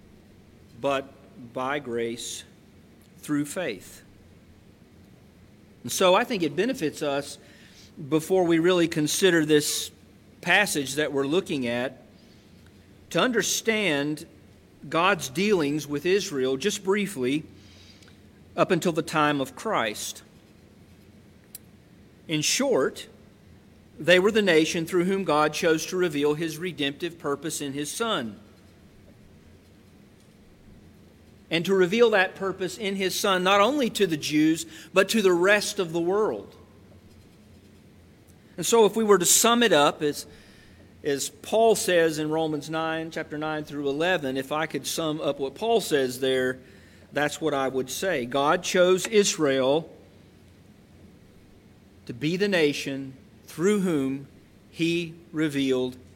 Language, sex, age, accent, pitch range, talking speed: English, male, 40-59, American, 110-175 Hz, 125 wpm